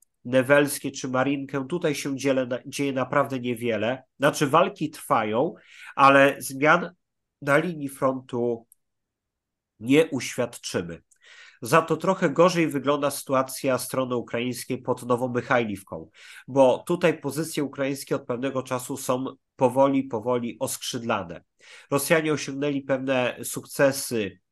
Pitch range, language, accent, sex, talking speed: 120-145 Hz, Polish, native, male, 105 wpm